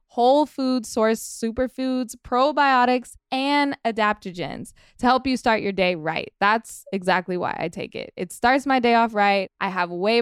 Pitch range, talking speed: 195-255 Hz, 170 wpm